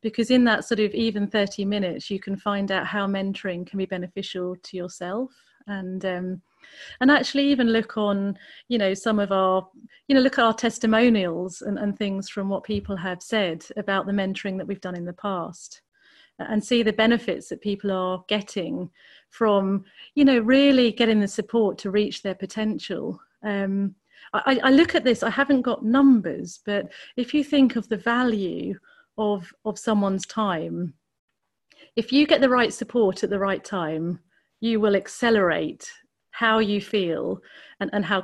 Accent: British